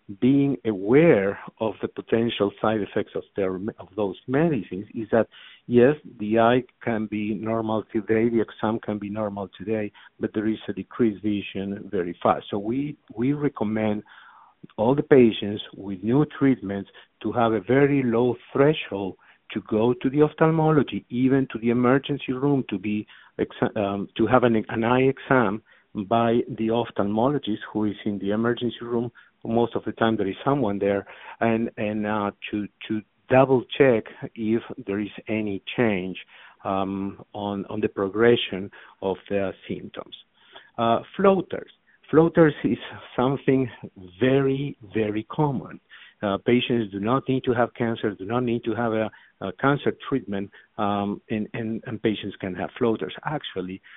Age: 50-69